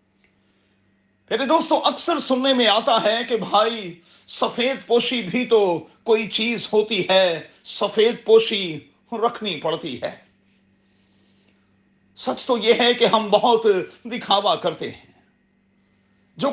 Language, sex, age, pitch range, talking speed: Urdu, male, 40-59, 180-250 Hz, 120 wpm